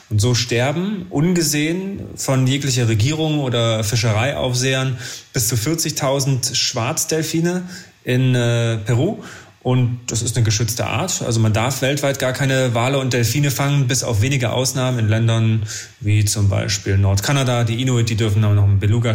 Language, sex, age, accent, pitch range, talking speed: German, male, 30-49, German, 115-145 Hz, 155 wpm